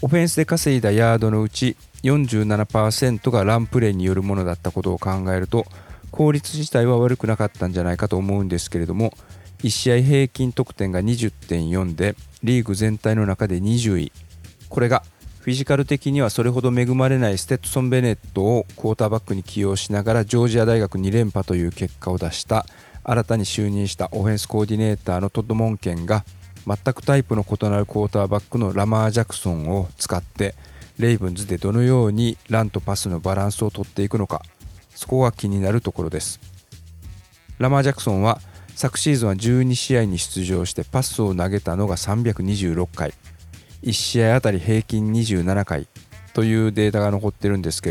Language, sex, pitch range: Japanese, male, 95-115 Hz